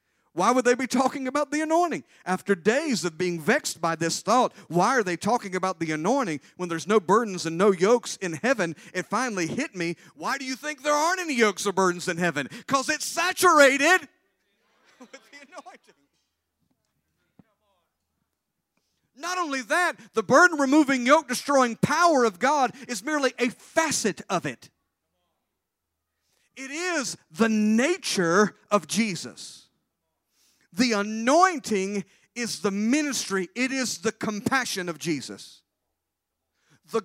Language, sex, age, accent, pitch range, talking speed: English, male, 50-69, American, 160-260 Hz, 140 wpm